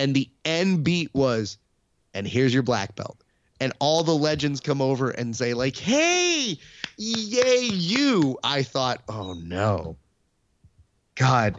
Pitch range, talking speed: 115-150 Hz, 140 wpm